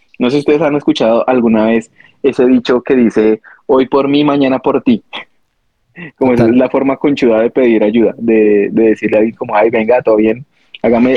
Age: 20-39